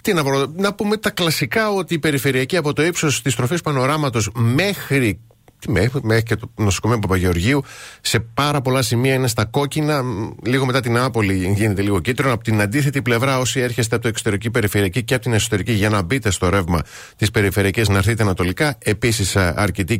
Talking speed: 190 wpm